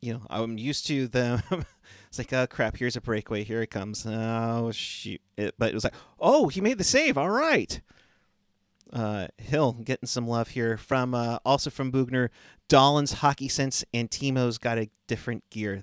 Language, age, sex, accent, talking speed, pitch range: English, 30-49, male, American, 185 wpm, 105-125 Hz